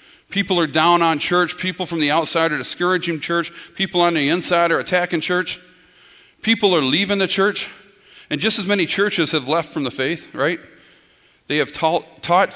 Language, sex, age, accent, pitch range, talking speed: English, male, 40-59, American, 155-195 Hz, 185 wpm